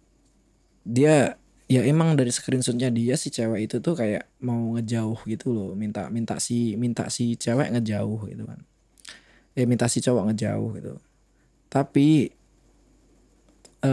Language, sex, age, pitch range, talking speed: Indonesian, male, 20-39, 110-130 Hz, 135 wpm